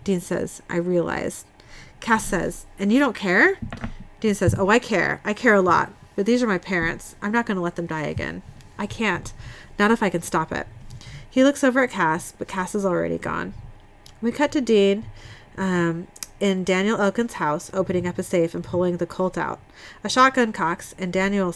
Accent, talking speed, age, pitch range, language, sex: American, 205 wpm, 30-49, 165-205 Hz, English, female